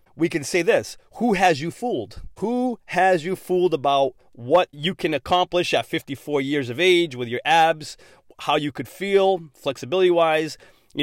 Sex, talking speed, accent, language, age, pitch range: male, 170 wpm, American, English, 30-49, 135-175 Hz